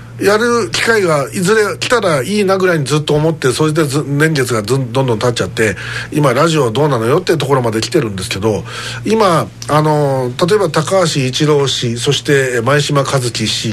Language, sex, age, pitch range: Japanese, male, 50-69, 120-185 Hz